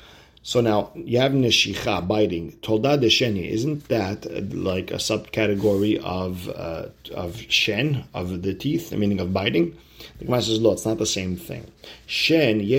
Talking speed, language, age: 140 wpm, English, 40-59